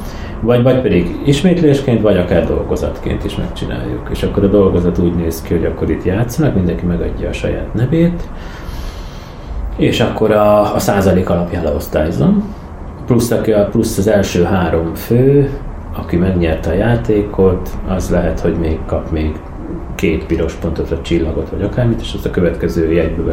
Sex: male